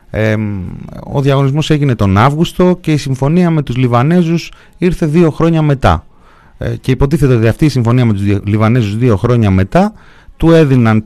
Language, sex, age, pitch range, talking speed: Greek, male, 30-49, 95-145 Hz, 170 wpm